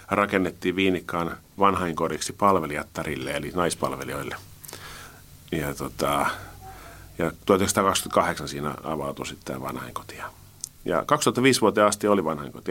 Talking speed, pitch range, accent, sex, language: 100 wpm, 75-100 Hz, native, male, Finnish